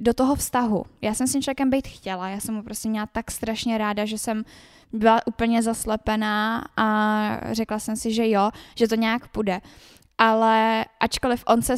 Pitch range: 210-235 Hz